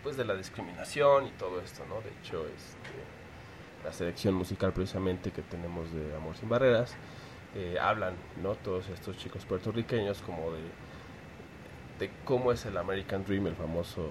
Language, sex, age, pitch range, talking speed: Spanish, male, 30-49, 90-110 Hz, 160 wpm